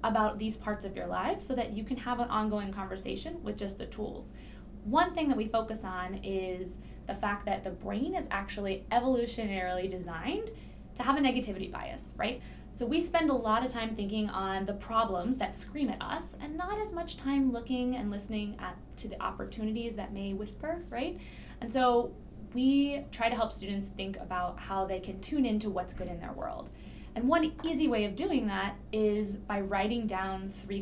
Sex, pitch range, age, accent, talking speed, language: female, 200-265 Hz, 10-29, American, 200 wpm, English